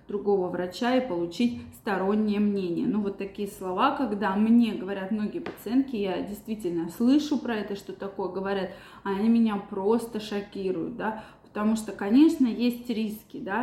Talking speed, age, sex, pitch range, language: 150 wpm, 20-39, female, 200-255 Hz, Russian